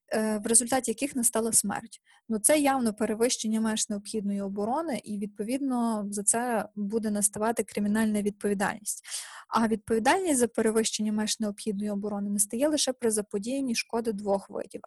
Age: 20-39